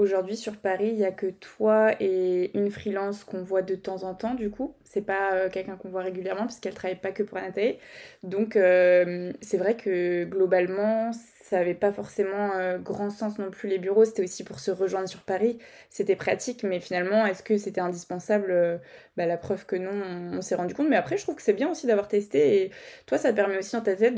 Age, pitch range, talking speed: 20-39, 185-215 Hz, 230 wpm